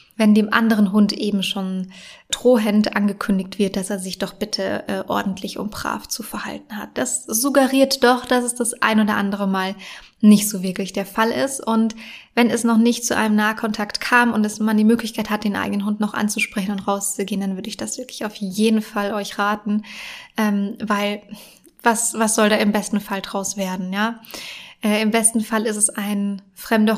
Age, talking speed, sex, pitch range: 20-39, 195 wpm, female, 200-225 Hz